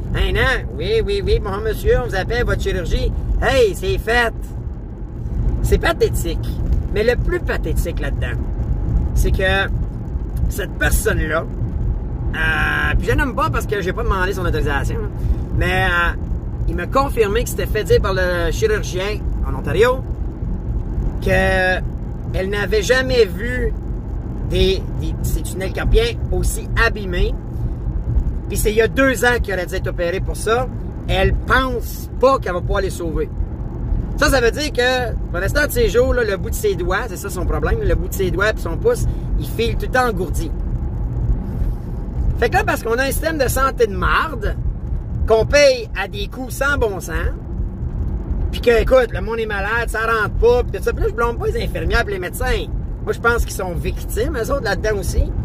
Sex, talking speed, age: male, 190 wpm, 40-59